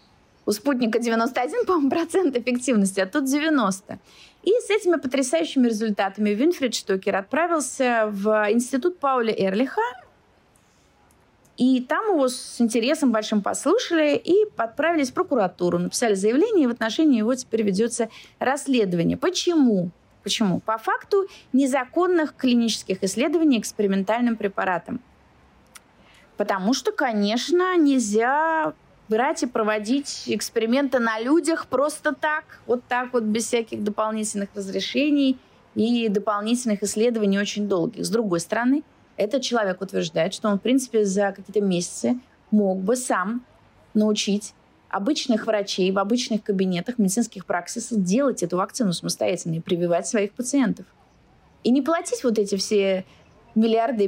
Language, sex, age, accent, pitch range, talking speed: Russian, female, 30-49, native, 205-275 Hz, 125 wpm